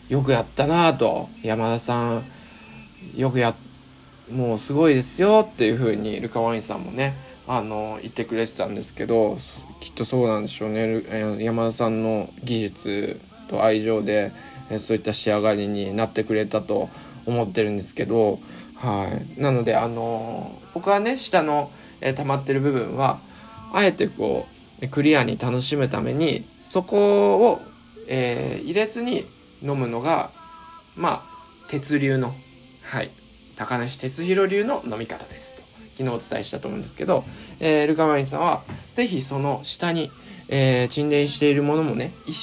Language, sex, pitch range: Japanese, male, 115-155 Hz